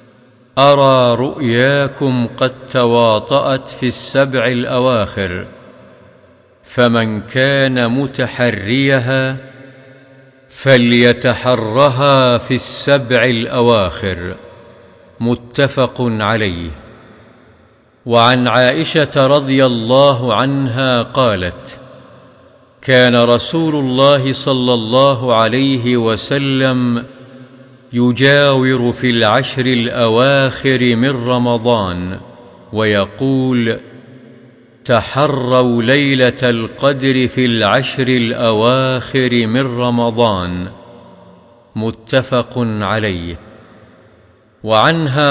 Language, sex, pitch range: Arabic, male, 115-135 Hz